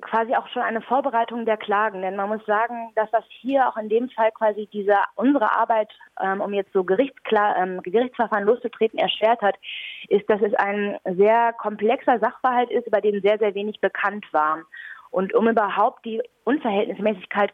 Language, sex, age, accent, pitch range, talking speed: German, female, 20-39, German, 190-225 Hz, 170 wpm